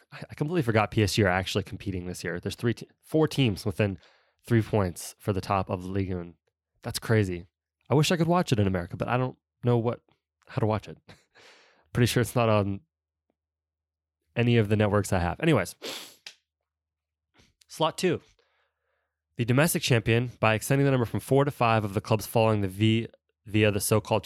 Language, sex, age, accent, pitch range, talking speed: English, male, 20-39, American, 90-115 Hz, 190 wpm